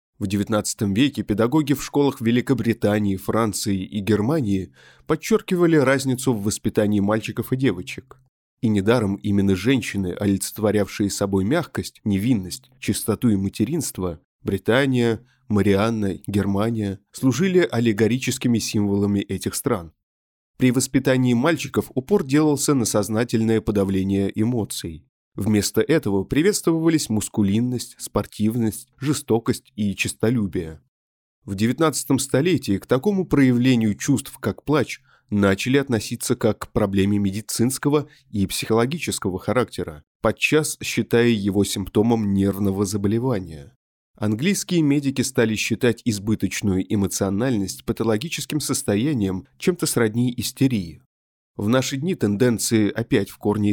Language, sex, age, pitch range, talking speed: Russian, male, 20-39, 100-130 Hz, 105 wpm